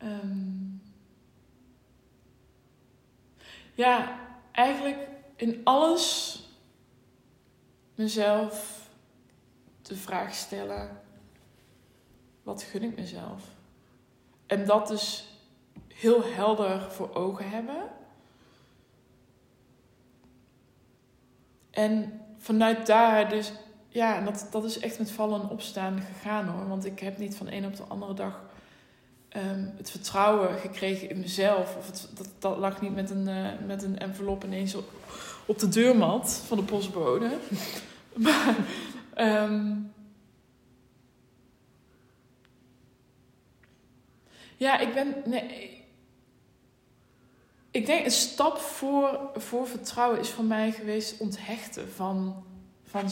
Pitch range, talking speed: 180-220 Hz, 105 wpm